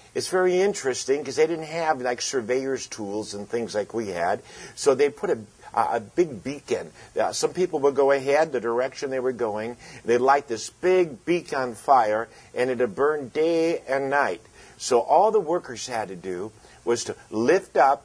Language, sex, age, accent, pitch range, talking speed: English, male, 50-69, American, 120-195 Hz, 185 wpm